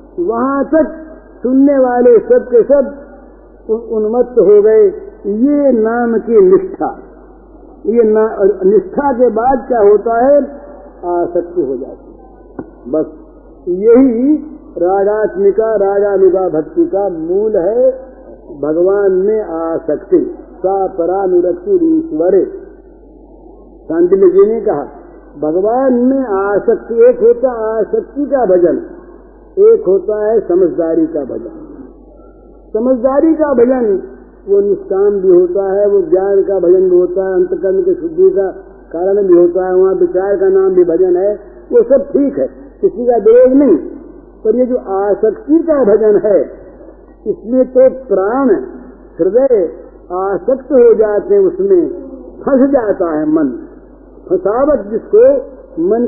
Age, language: 50-69, Hindi